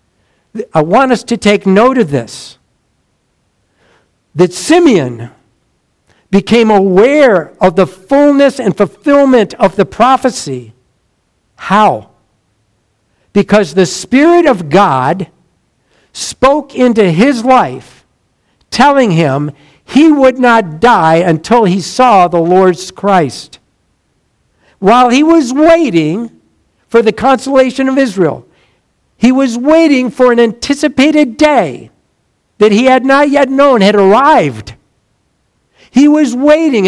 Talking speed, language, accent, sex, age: 110 wpm, English, American, male, 60-79